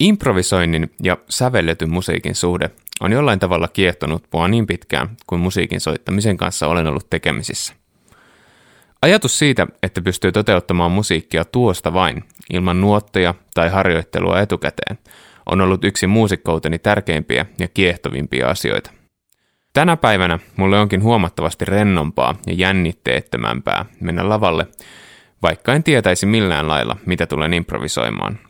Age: 20-39